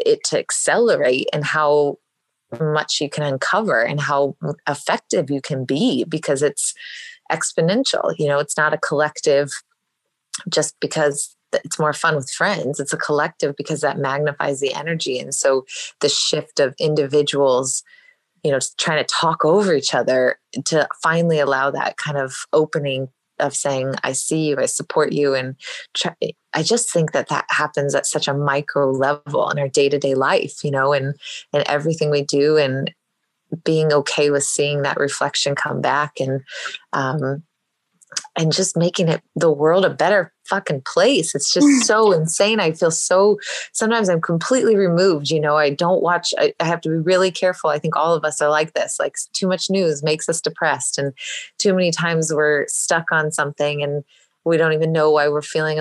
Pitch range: 145-165 Hz